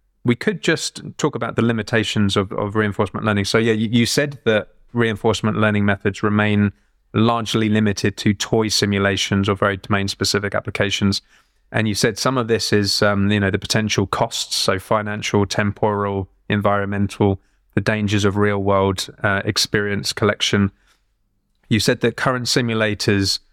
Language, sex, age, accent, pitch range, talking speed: English, male, 20-39, British, 100-110 Hz, 155 wpm